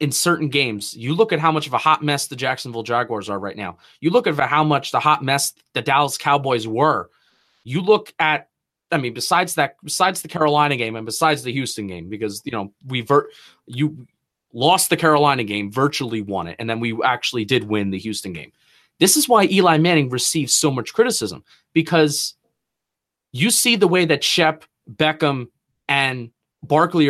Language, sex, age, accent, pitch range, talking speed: English, male, 30-49, American, 120-180 Hz, 195 wpm